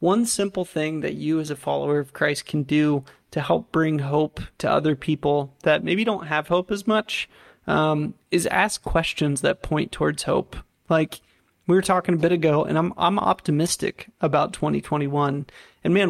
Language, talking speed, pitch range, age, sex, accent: English, 175 wpm, 150-175 Hz, 30-49, male, American